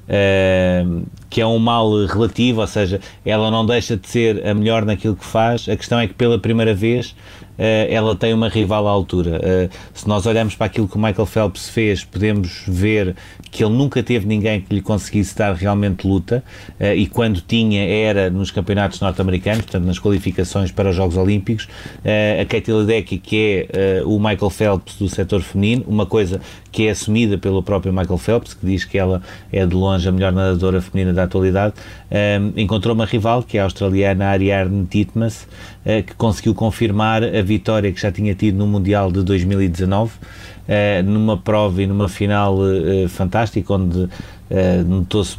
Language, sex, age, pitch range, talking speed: Portuguese, male, 30-49, 95-105 Hz, 180 wpm